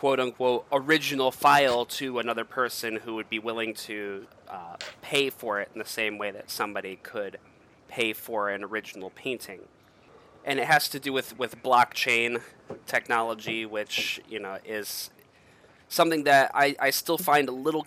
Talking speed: 160 wpm